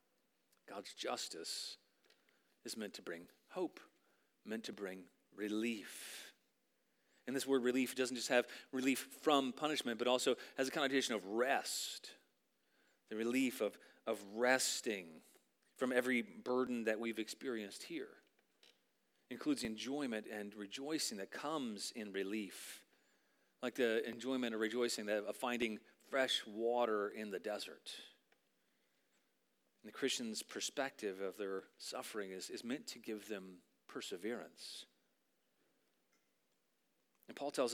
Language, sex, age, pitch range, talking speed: English, male, 40-59, 115-175 Hz, 125 wpm